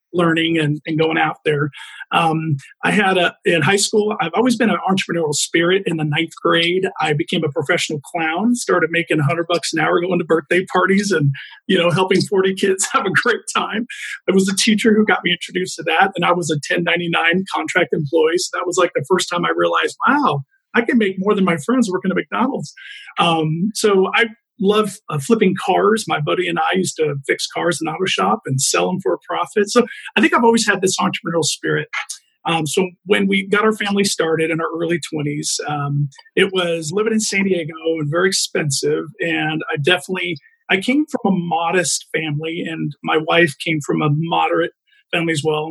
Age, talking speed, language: 40-59, 210 wpm, English